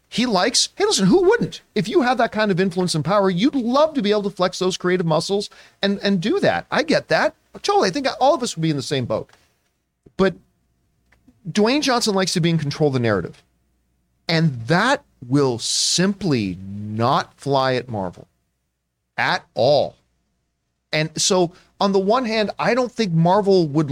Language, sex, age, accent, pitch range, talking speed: English, male, 40-59, American, 140-200 Hz, 190 wpm